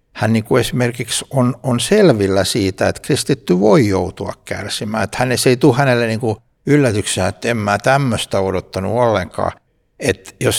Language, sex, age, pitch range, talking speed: Finnish, male, 60-79, 100-125 Hz, 160 wpm